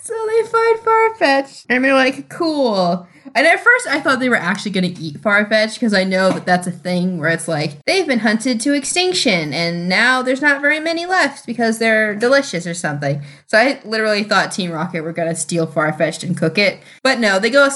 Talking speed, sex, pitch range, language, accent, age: 225 wpm, female, 170-240 Hz, English, American, 10-29